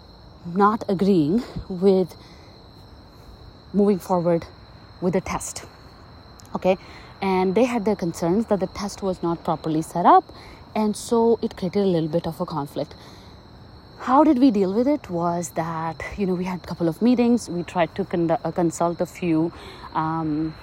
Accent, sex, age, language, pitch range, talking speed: Indian, female, 30-49, English, 165-205 Hz, 165 wpm